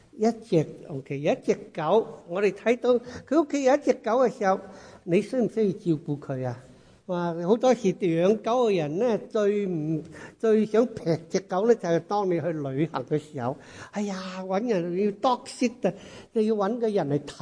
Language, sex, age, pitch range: English, male, 60-79, 175-245 Hz